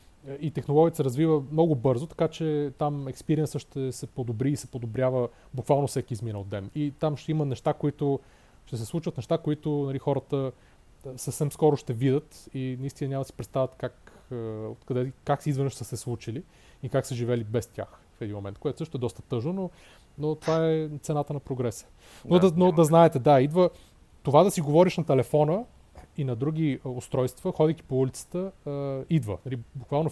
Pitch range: 120-150 Hz